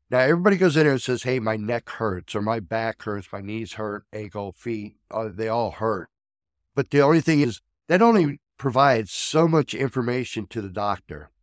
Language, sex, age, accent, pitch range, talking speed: English, male, 60-79, American, 105-130 Hz, 195 wpm